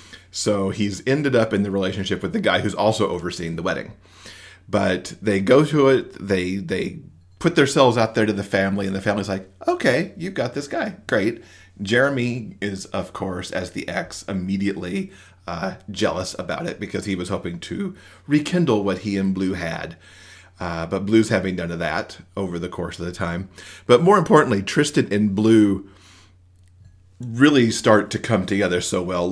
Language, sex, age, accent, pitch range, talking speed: English, male, 40-59, American, 95-110 Hz, 180 wpm